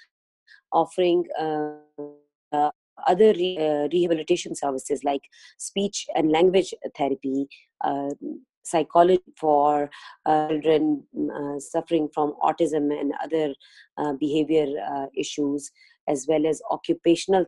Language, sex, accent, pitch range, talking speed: English, female, Indian, 150-185 Hz, 105 wpm